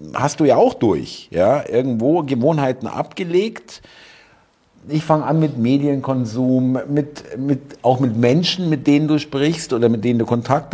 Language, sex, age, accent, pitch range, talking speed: German, male, 50-69, German, 110-145 Hz, 145 wpm